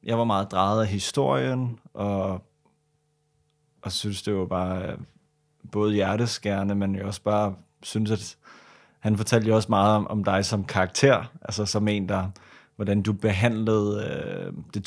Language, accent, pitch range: Danish, native, 100-120 Hz